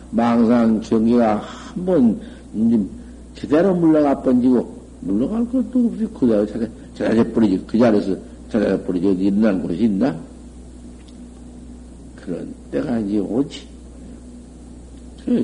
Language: Korean